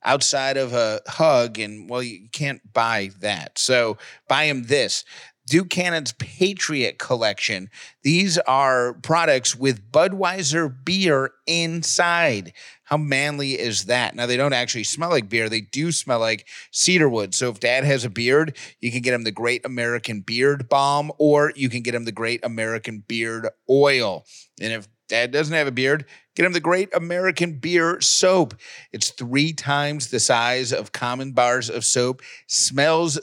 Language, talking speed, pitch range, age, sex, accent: English, 165 wpm, 120-150 Hz, 30-49, male, American